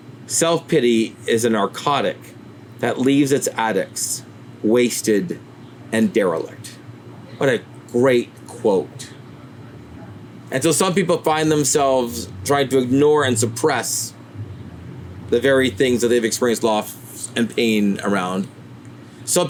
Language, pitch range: English, 120-160 Hz